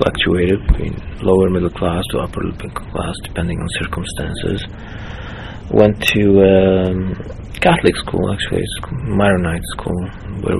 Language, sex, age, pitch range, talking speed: English, male, 30-49, 85-100 Hz, 120 wpm